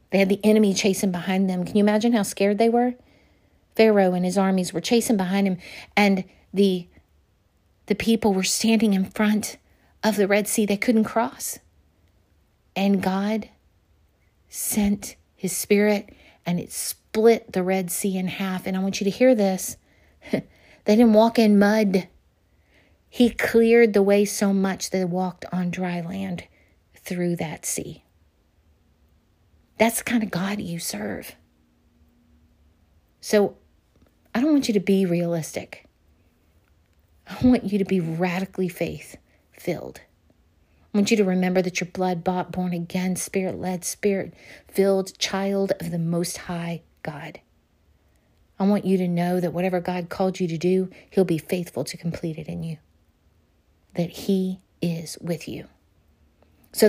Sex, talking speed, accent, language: female, 150 wpm, American, English